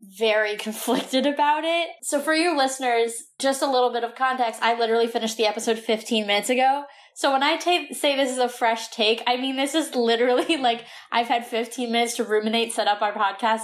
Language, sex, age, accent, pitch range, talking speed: English, female, 10-29, American, 220-260 Hz, 205 wpm